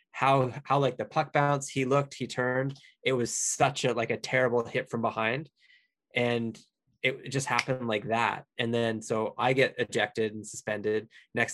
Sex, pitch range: male, 110-130 Hz